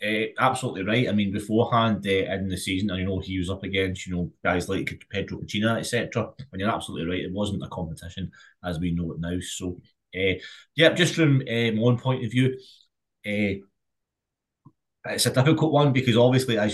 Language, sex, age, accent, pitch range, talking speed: English, male, 20-39, British, 95-120 Hz, 195 wpm